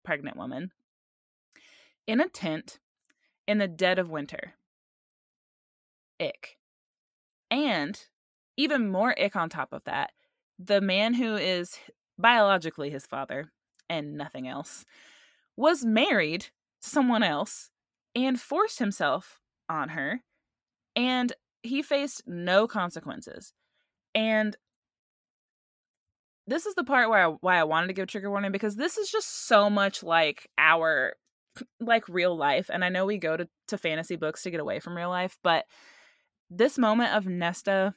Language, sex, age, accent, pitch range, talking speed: English, female, 20-39, American, 165-225 Hz, 140 wpm